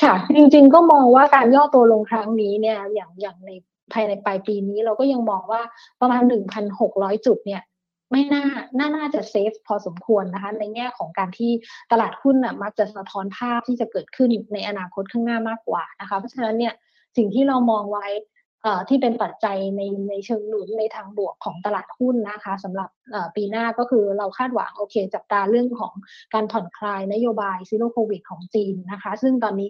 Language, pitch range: Thai, 200-235 Hz